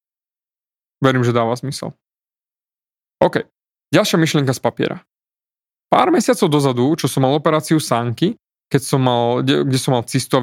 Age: 20-39